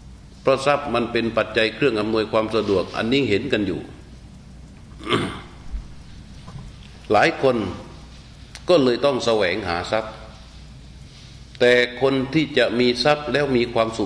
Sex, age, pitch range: male, 60-79, 100-130 Hz